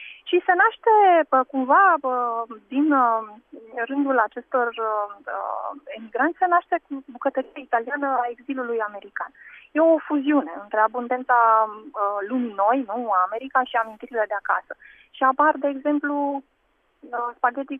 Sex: female